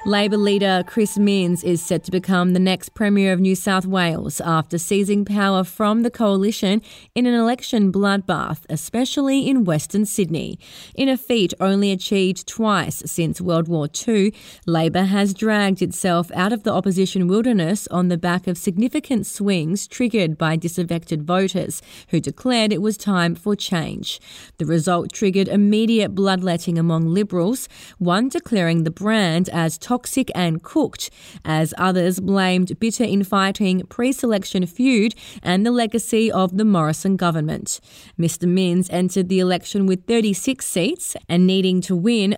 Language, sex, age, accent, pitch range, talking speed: English, female, 30-49, Australian, 175-210 Hz, 150 wpm